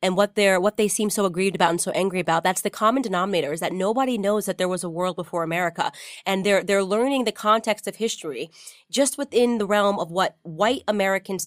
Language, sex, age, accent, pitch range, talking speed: English, female, 20-39, American, 170-215 Hz, 230 wpm